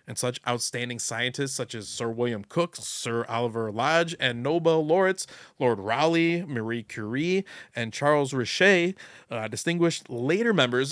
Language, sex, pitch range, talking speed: English, male, 120-165 Hz, 145 wpm